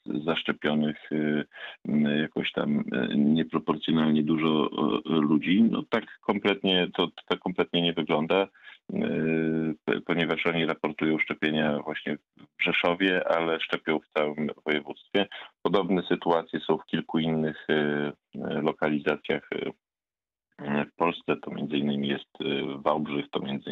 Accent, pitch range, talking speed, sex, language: native, 75-85 Hz, 105 wpm, male, Polish